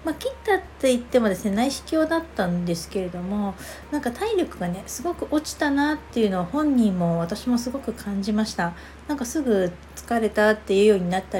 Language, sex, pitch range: Japanese, female, 195-275 Hz